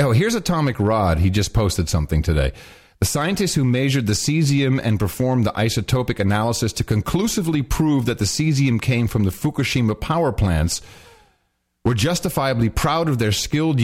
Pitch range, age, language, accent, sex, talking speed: 90-135 Hz, 40-59, English, American, male, 165 wpm